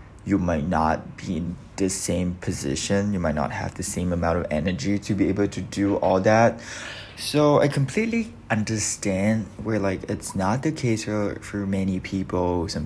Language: English